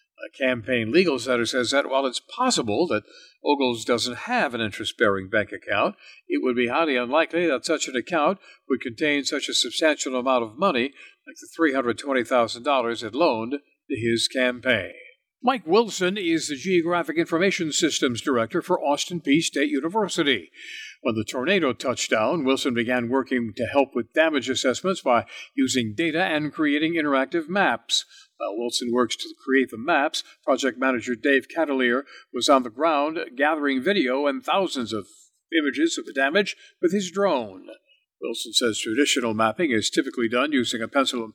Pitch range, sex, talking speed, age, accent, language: 130-200 Hz, male, 165 wpm, 60-79, American, English